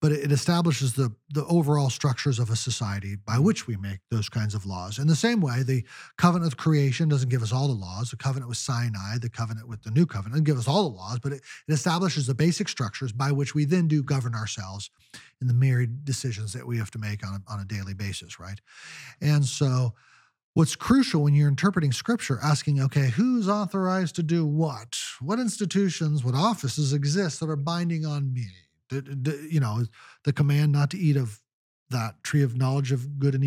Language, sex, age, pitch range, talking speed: English, male, 40-59, 125-175 Hz, 210 wpm